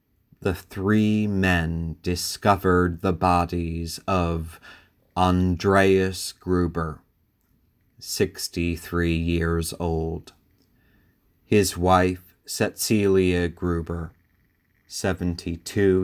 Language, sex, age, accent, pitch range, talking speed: English, male, 40-59, American, 85-95 Hz, 65 wpm